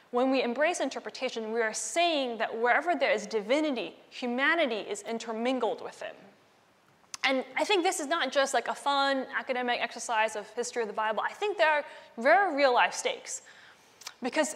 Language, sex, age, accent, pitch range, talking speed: English, female, 10-29, American, 225-285 Hz, 175 wpm